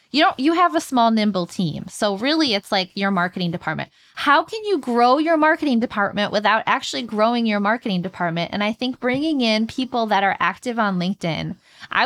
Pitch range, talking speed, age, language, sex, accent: 195-265 Hz, 200 wpm, 20-39, English, female, American